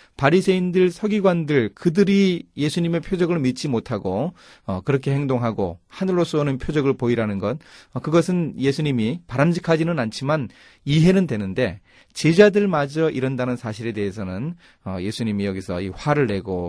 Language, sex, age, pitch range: Korean, male, 30-49, 110-155 Hz